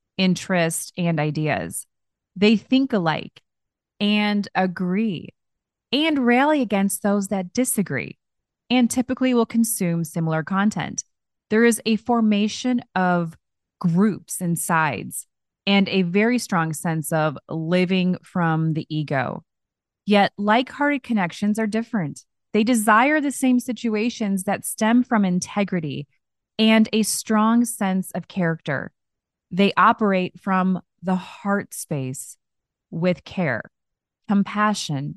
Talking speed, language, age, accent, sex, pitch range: 115 wpm, English, 20-39, American, female, 165-220 Hz